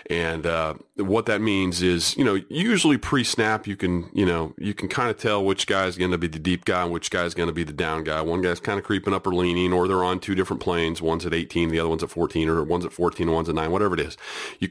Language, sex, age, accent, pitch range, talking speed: English, male, 30-49, American, 85-105 Hz, 275 wpm